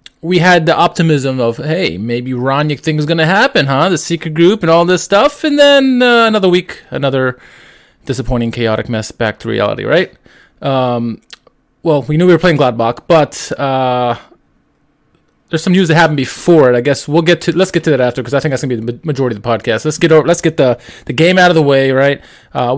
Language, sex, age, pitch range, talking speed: English, male, 20-39, 130-170 Hz, 225 wpm